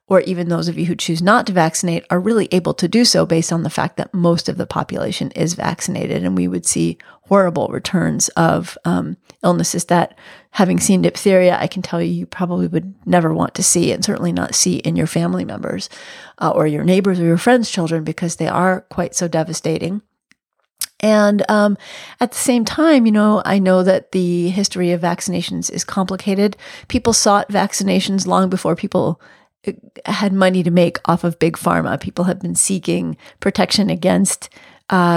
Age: 30-49